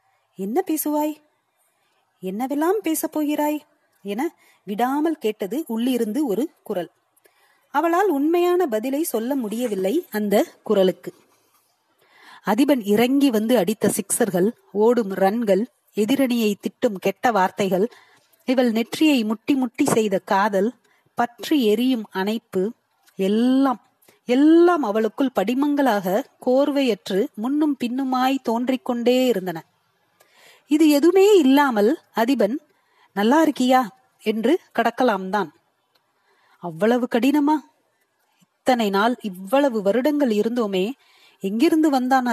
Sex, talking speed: female, 90 wpm